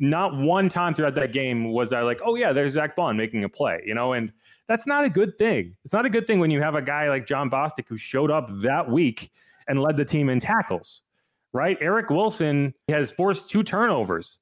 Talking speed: 235 wpm